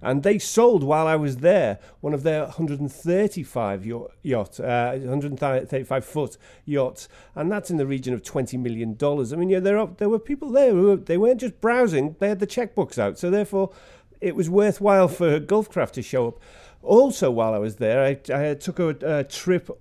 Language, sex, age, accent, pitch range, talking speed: English, male, 40-59, British, 130-185 Hz, 195 wpm